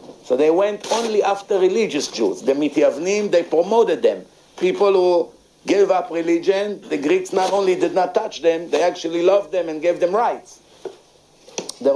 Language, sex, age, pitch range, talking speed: English, male, 50-69, 170-260 Hz, 170 wpm